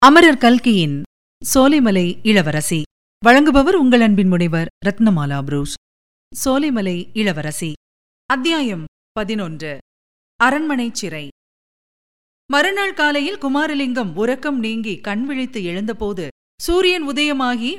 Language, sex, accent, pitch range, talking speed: Tamil, female, native, 195-275 Hz, 85 wpm